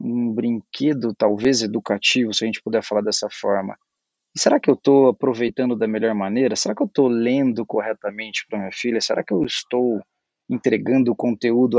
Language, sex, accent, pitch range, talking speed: Portuguese, male, Brazilian, 110-155 Hz, 180 wpm